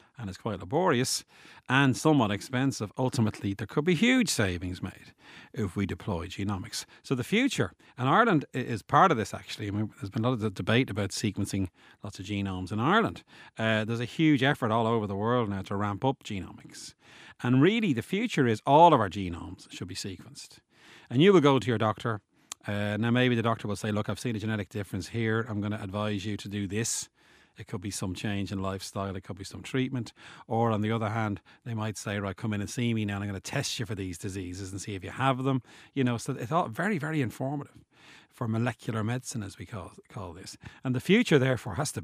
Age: 40-59